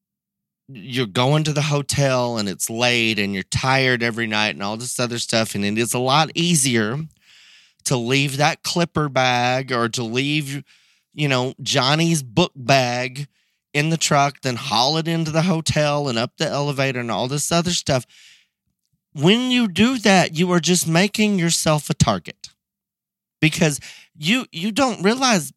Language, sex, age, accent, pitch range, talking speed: English, male, 30-49, American, 130-180 Hz, 165 wpm